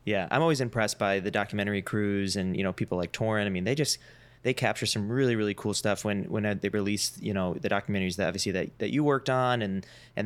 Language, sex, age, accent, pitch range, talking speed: English, male, 20-39, American, 100-120 Hz, 245 wpm